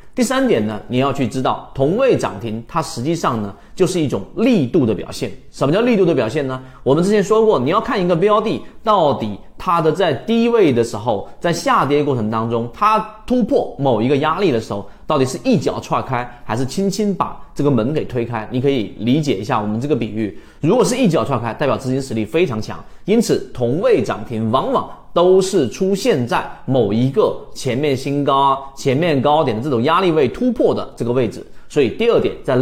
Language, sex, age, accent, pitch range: Chinese, male, 30-49, native, 120-195 Hz